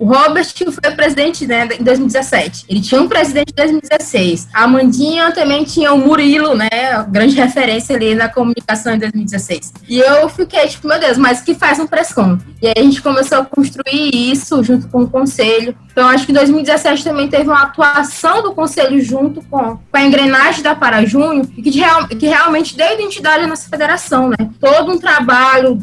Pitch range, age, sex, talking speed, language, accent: 245-300 Hz, 20-39, female, 195 wpm, Portuguese, Brazilian